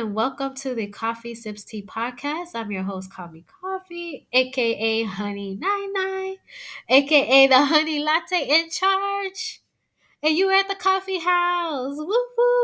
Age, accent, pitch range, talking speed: 20-39, American, 205-275 Hz, 140 wpm